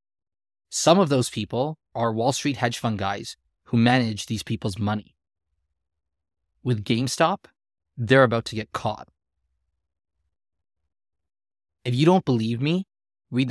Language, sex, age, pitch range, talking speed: English, male, 20-39, 95-130 Hz, 125 wpm